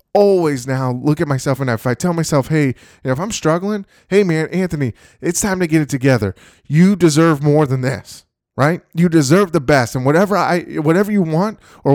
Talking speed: 200 wpm